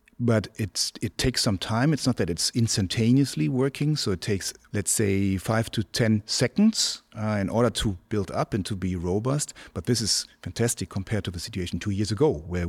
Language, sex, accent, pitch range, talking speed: Danish, male, German, 100-125 Hz, 205 wpm